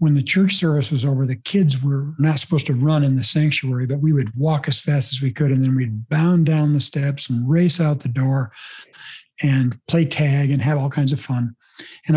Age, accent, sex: 60-79, American, male